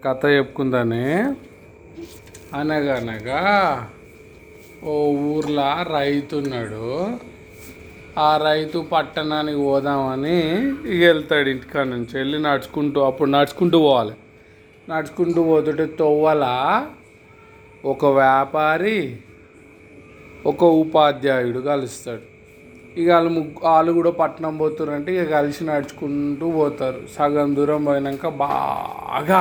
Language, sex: Telugu, male